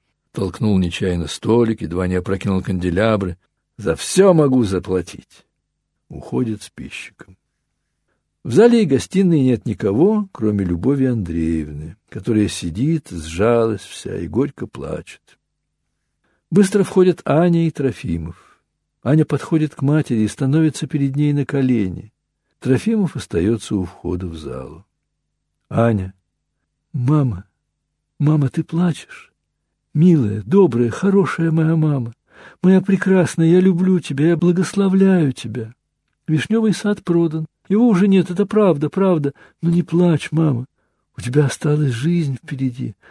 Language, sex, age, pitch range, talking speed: Russian, male, 60-79, 110-175 Hz, 120 wpm